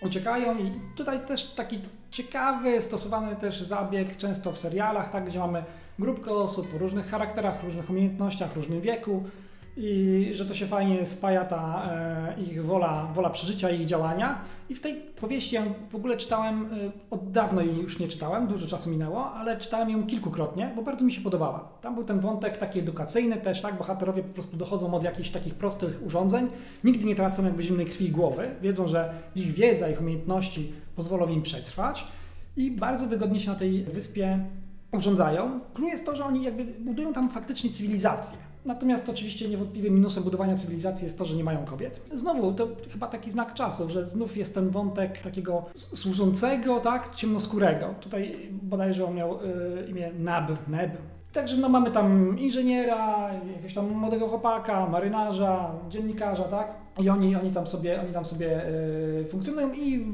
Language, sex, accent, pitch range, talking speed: Polish, male, native, 180-225 Hz, 175 wpm